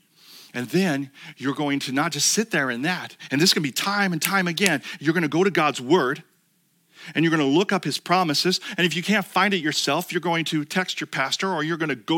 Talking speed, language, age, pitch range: 255 wpm, English, 40-59, 165-210 Hz